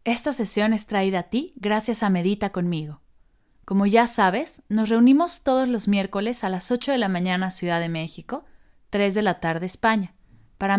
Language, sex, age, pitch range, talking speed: Spanish, female, 20-39, 160-225 Hz, 190 wpm